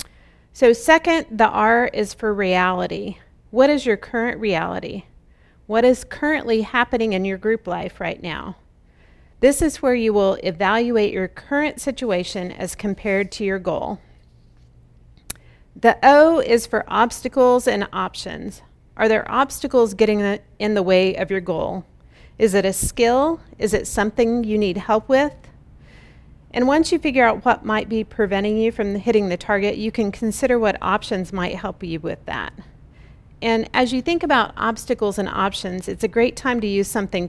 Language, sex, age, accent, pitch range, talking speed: English, female, 40-59, American, 190-240 Hz, 165 wpm